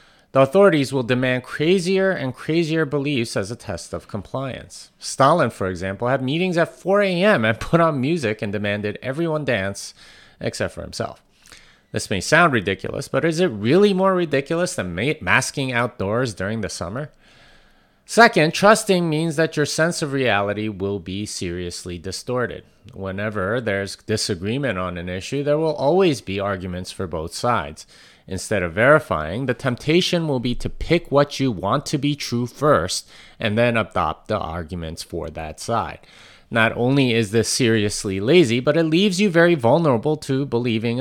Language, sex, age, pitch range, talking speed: English, male, 30-49, 100-150 Hz, 160 wpm